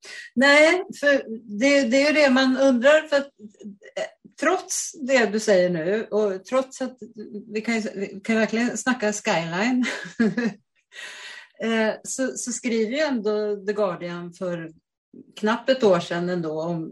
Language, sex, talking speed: Swedish, female, 140 wpm